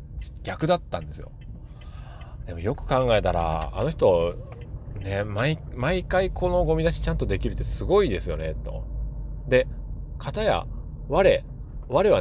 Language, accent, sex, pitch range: Japanese, native, male, 80-130 Hz